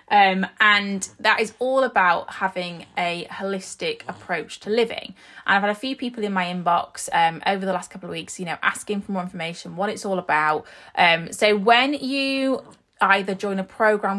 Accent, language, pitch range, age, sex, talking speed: British, English, 180-235 Hz, 20-39, female, 195 wpm